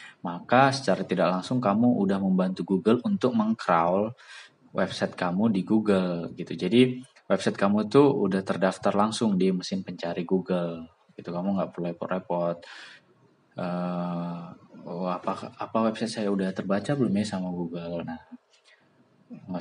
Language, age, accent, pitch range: Indonesian, 20-39, native, 90-105 Hz